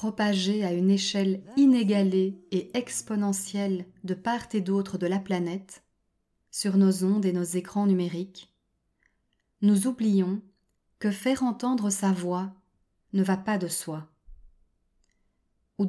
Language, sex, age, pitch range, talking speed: French, female, 30-49, 185-215 Hz, 130 wpm